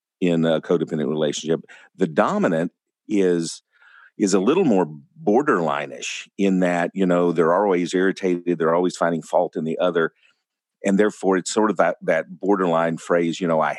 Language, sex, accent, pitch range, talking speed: English, male, American, 85-100 Hz, 165 wpm